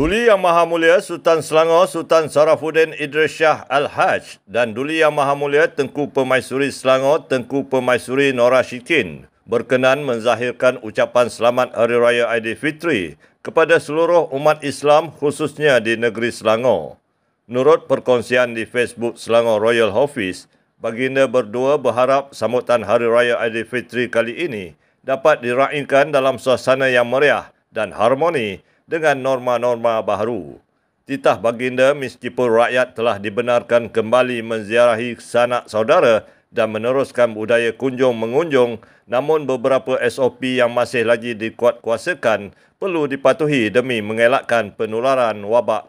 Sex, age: male, 50-69